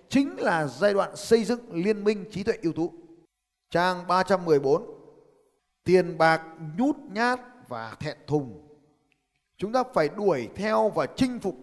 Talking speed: 150 wpm